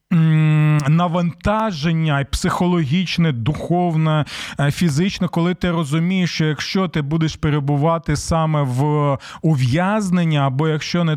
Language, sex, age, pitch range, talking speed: Ukrainian, male, 20-39, 150-190 Hz, 95 wpm